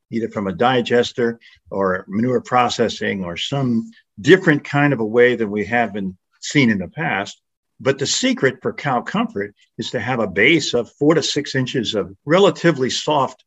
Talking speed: 185 wpm